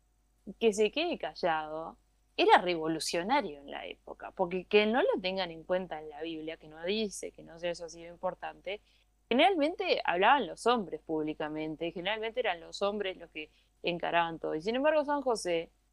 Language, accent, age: Spanish, Argentinian, 20-39